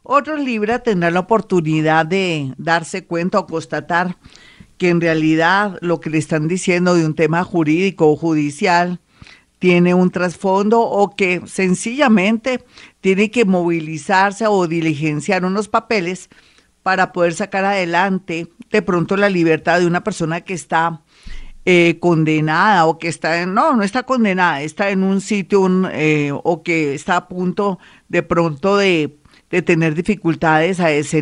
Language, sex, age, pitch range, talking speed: Spanish, female, 50-69, 170-215 Hz, 150 wpm